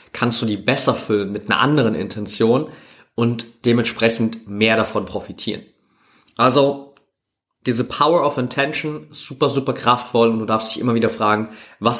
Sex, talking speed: male, 150 wpm